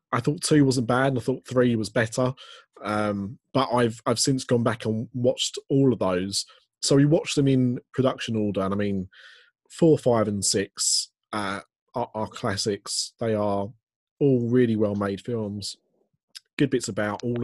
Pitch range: 105-130 Hz